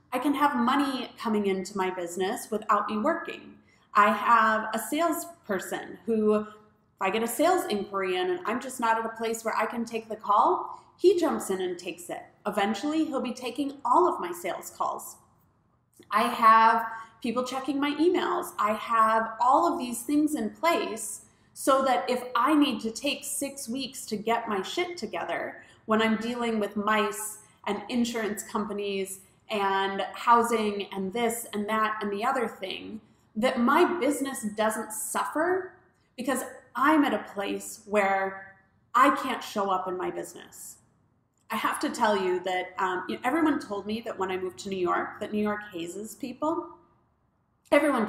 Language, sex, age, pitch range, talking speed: English, female, 30-49, 200-275 Hz, 170 wpm